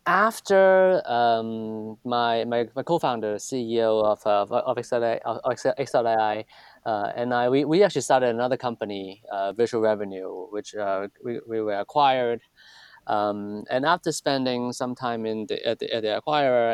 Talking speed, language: 155 wpm, English